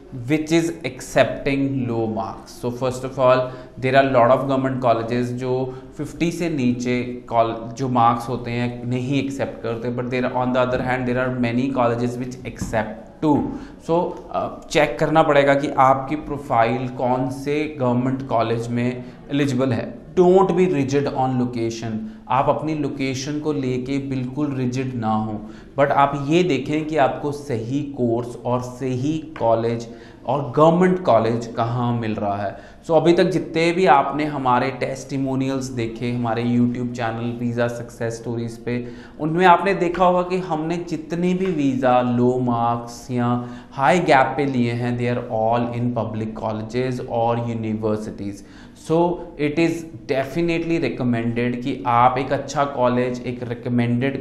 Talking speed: 155 wpm